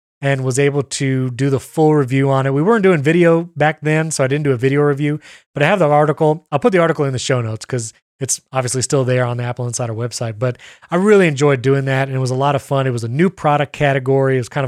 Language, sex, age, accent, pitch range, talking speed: English, male, 30-49, American, 130-160 Hz, 280 wpm